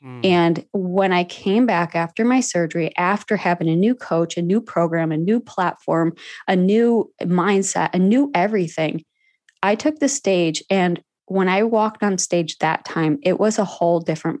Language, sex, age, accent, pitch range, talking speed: English, female, 20-39, American, 170-210 Hz, 175 wpm